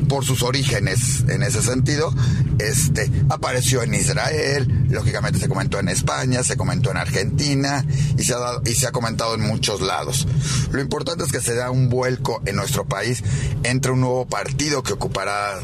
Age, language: 40-59, Spanish